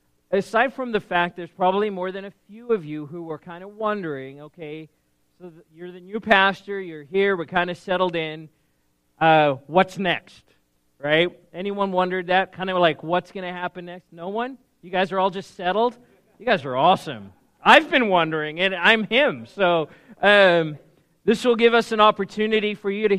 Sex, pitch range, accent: male, 155-195 Hz, American